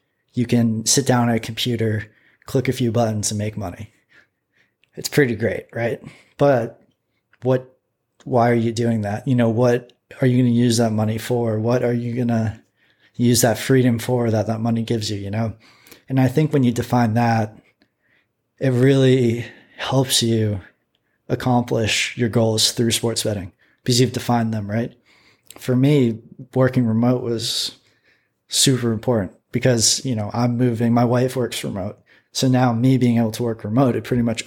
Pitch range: 115-125 Hz